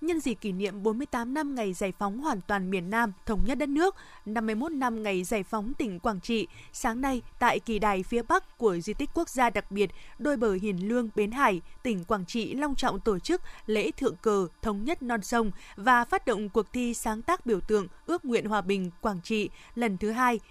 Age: 20-39